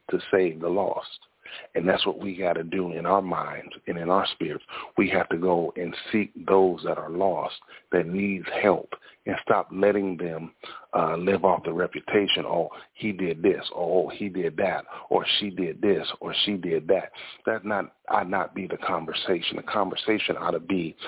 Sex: male